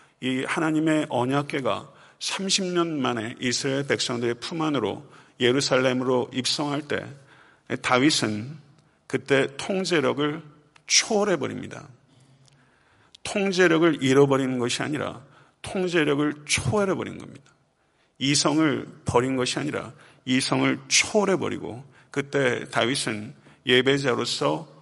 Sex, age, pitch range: male, 50-69, 130-150 Hz